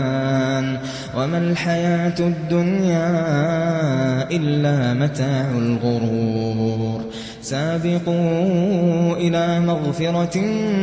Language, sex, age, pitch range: Arabic, male, 20-39, 145-175 Hz